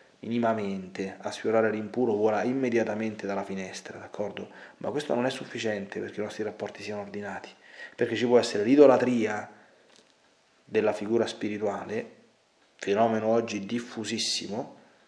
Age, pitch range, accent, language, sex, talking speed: 30-49, 105-125 Hz, native, Italian, male, 125 wpm